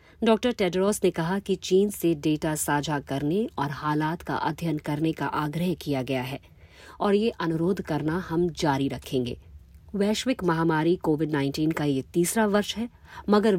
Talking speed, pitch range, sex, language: 165 wpm, 140-190 Hz, female, Hindi